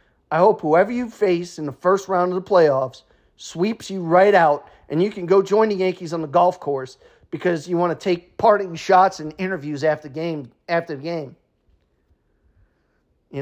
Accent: American